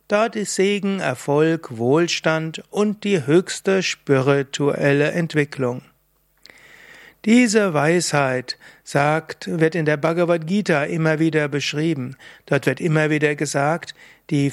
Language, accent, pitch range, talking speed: German, German, 145-175 Hz, 110 wpm